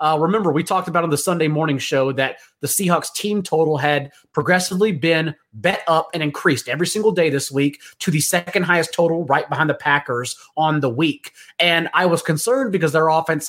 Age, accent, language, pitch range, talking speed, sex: 30-49, American, English, 150-190 Hz, 205 wpm, male